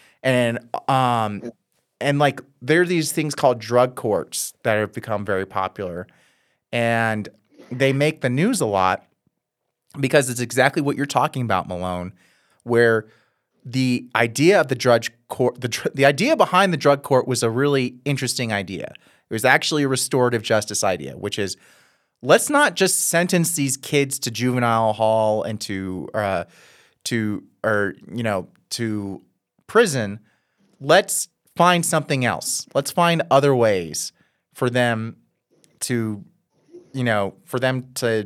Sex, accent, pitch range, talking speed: male, American, 110-145 Hz, 145 wpm